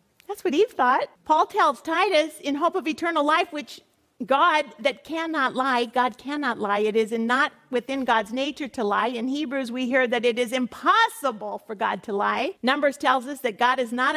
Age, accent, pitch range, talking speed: 50-69, American, 210-270 Hz, 200 wpm